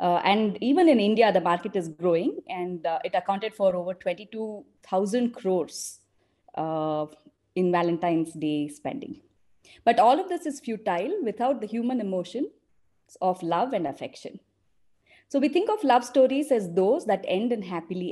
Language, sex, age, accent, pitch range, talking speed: English, female, 30-49, Indian, 175-245 Hz, 160 wpm